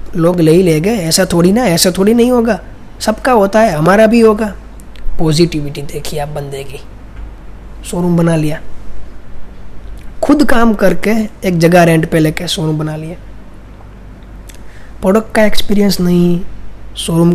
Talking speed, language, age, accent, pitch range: 145 wpm, Hindi, 20-39, native, 150-200 Hz